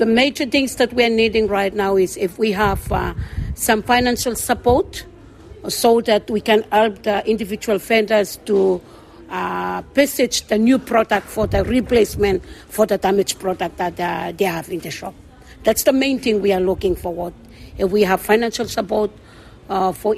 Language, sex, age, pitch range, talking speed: English, female, 50-69, 185-230 Hz, 180 wpm